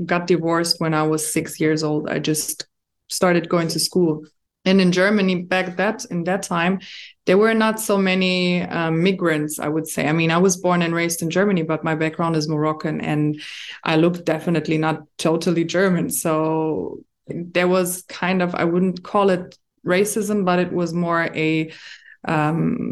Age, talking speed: 20-39, 180 wpm